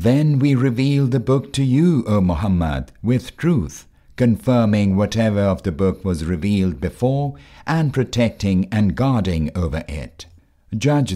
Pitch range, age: 90-120 Hz, 60-79